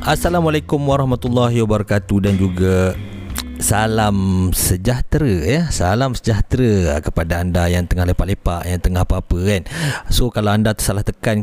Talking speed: 125 wpm